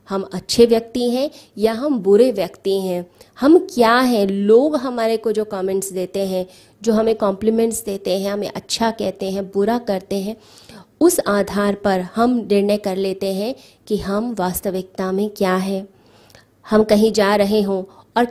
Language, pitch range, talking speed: Hindi, 190-225 Hz, 165 wpm